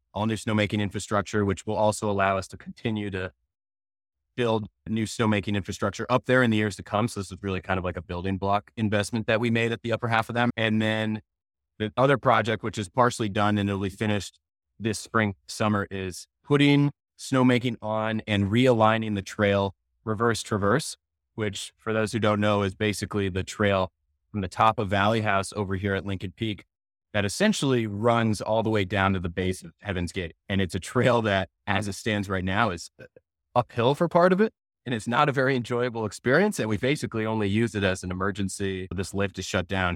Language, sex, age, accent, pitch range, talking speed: English, male, 30-49, American, 95-115 Hz, 210 wpm